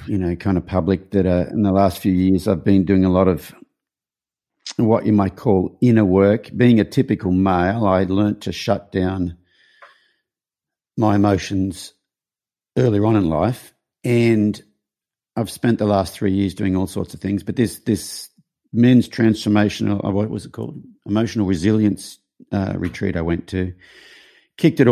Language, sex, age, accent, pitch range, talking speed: English, male, 50-69, Australian, 95-115 Hz, 165 wpm